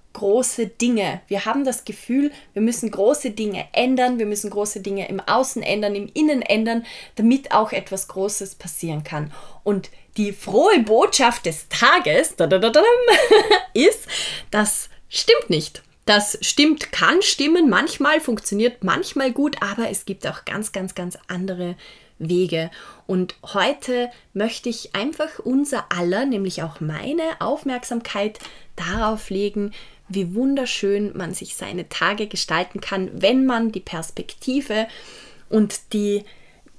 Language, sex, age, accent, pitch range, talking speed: German, female, 20-39, German, 190-245 Hz, 130 wpm